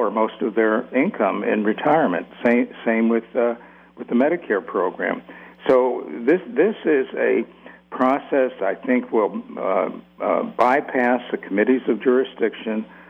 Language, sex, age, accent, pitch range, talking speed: English, male, 60-79, American, 100-120 Hz, 135 wpm